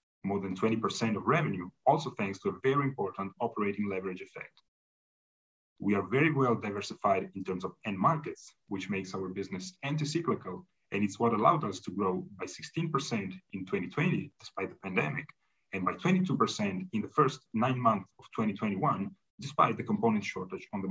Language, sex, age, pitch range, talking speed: English, male, 30-49, 95-130 Hz, 170 wpm